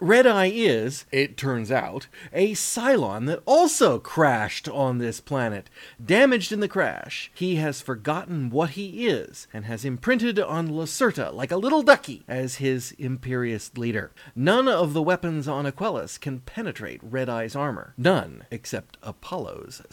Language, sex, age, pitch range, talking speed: English, male, 30-49, 130-190 Hz, 155 wpm